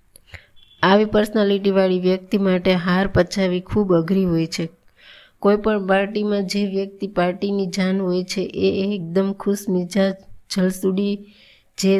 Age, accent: 20-39, native